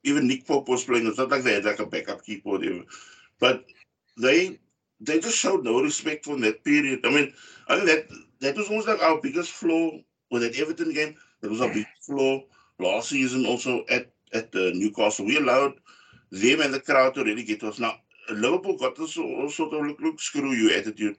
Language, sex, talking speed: English, male, 210 wpm